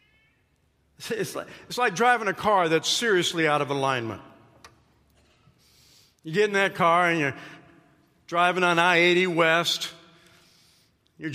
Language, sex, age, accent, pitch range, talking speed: English, male, 50-69, American, 180-255 Hz, 125 wpm